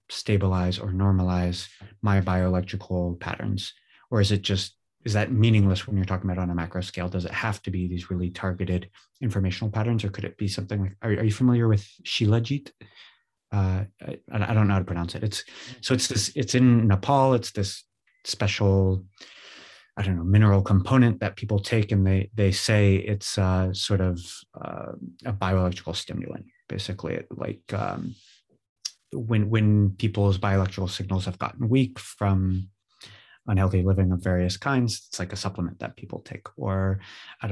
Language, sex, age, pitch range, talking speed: English, male, 30-49, 95-105 Hz, 175 wpm